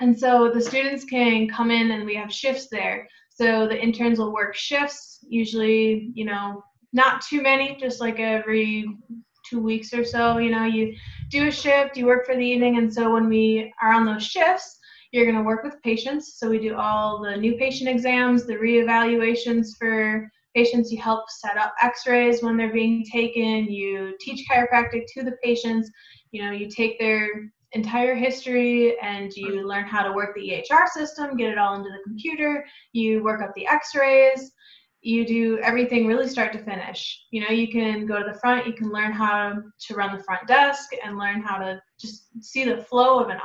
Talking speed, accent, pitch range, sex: 200 wpm, American, 215-250 Hz, female